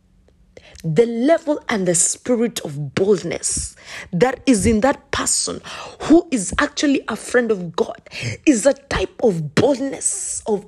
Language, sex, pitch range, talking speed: English, female, 185-265 Hz, 140 wpm